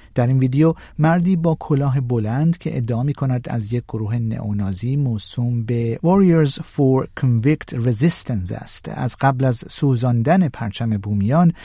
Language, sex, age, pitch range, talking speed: Persian, male, 50-69, 115-160 Hz, 140 wpm